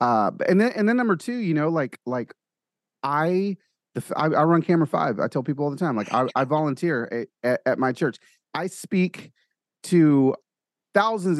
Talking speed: 200 wpm